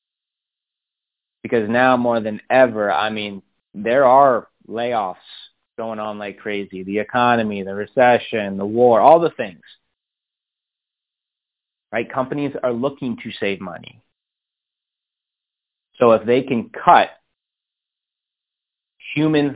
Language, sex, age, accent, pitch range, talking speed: English, male, 30-49, American, 105-125 Hz, 110 wpm